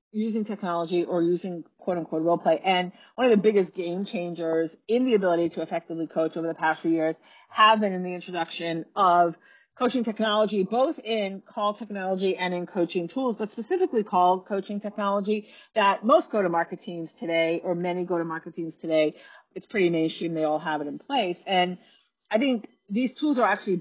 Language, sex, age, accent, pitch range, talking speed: English, female, 40-59, American, 170-215 Hz, 180 wpm